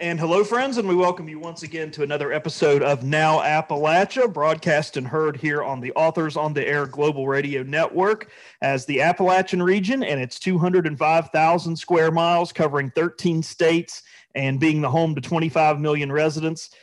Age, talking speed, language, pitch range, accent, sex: 40-59, 170 wpm, English, 145-175 Hz, American, male